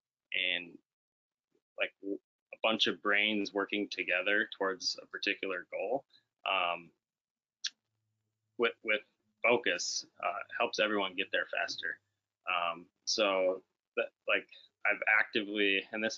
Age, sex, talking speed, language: 20-39, male, 110 wpm, English